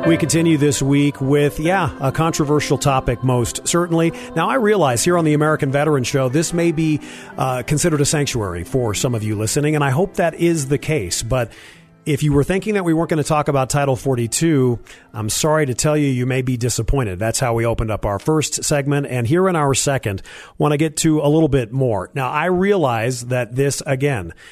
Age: 40-59